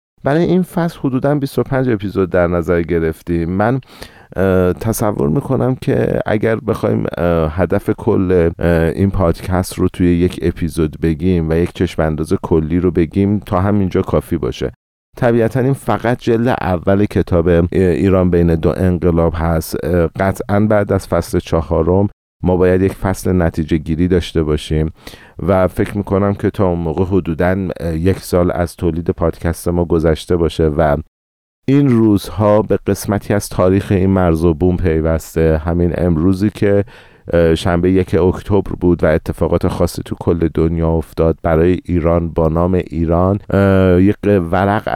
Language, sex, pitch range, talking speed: Persian, male, 85-100 Hz, 145 wpm